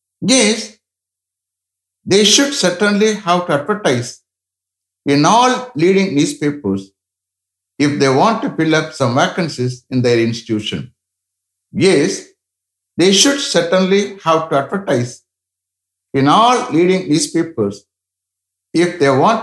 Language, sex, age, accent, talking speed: English, male, 60-79, Indian, 110 wpm